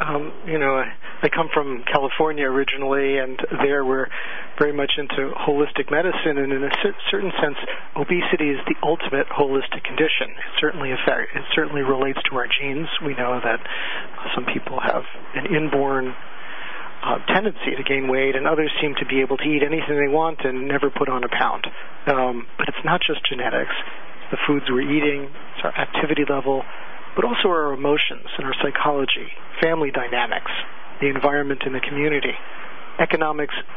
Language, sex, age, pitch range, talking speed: English, male, 40-59, 135-155 Hz, 170 wpm